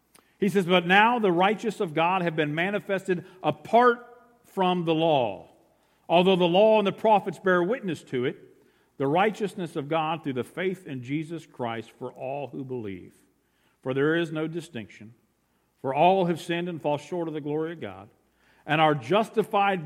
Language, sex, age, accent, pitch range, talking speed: English, male, 50-69, American, 115-170 Hz, 180 wpm